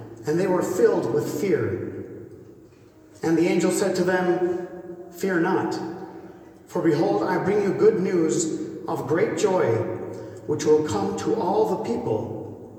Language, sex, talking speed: English, male, 145 wpm